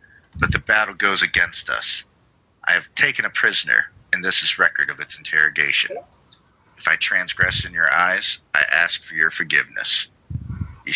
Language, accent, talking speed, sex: English, American, 165 wpm, male